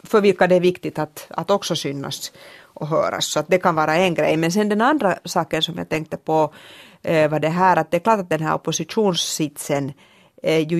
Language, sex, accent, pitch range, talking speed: Swedish, female, Finnish, 150-190 Hz, 210 wpm